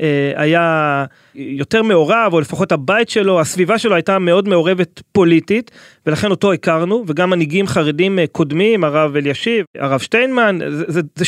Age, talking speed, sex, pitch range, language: 30-49, 145 wpm, male, 165-210 Hz, Hebrew